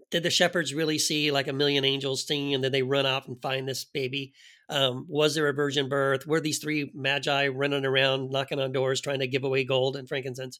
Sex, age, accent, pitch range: male, 40-59, American, 135-175 Hz